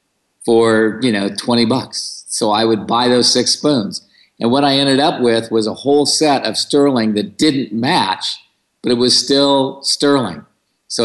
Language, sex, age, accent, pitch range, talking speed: English, male, 50-69, American, 110-140 Hz, 180 wpm